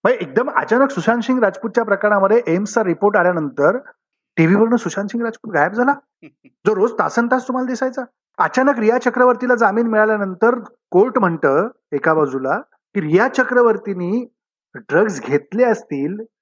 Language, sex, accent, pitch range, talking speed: Marathi, male, native, 175-240 Hz, 130 wpm